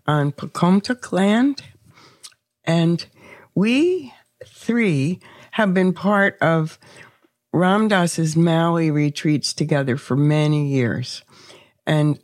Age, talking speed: 60-79, 90 wpm